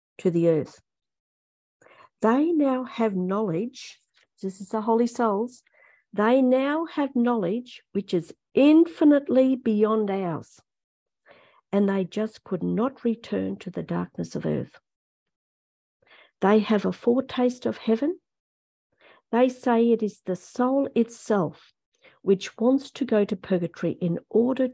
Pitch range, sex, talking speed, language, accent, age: 180-245 Hz, female, 130 wpm, English, Australian, 50-69